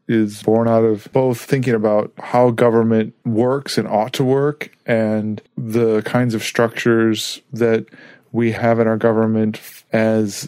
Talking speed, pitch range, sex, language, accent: 150 wpm, 110-125 Hz, male, English, American